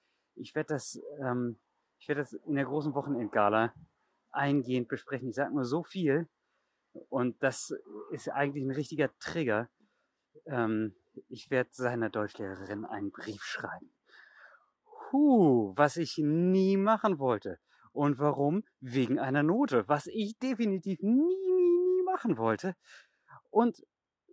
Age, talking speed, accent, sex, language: 30-49, 125 wpm, German, male, German